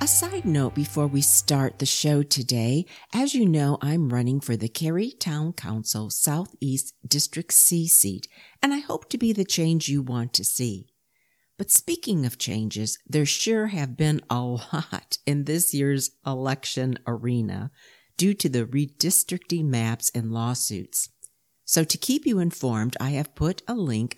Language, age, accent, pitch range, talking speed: English, 50-69, American, 120-170 Hz, 165 wpm